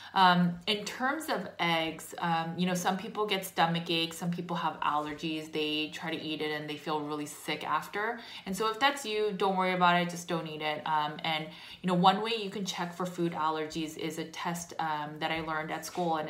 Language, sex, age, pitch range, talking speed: English, female, 20-39, 155-180 Hz, 230 wpm